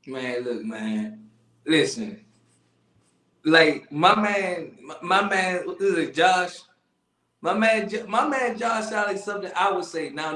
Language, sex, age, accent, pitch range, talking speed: English, male, 20-39, American, 140-200 Hz, 155 wpm